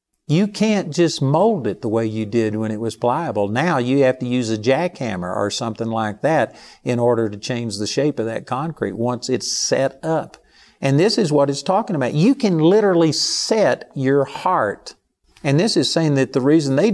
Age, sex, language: 50-69, male, English